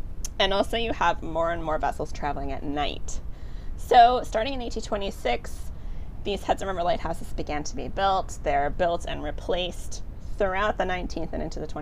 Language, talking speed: English, 170 wpm